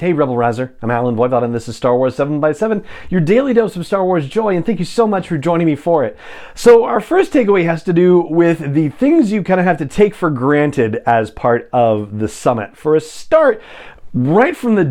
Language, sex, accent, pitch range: English, male, American, 125-175 Hz